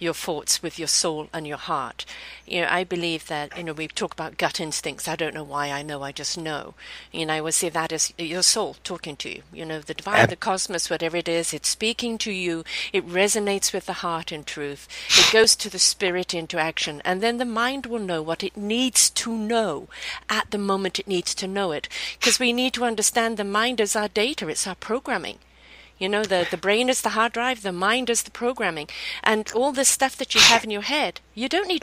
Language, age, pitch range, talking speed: English, 50-69, 170-235 Hz, 240 wpm